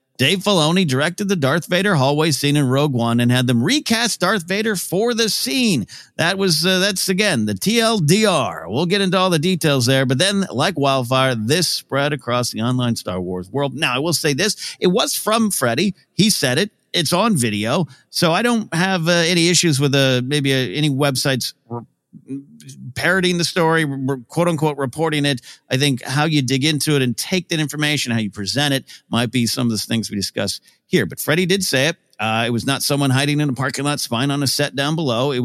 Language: English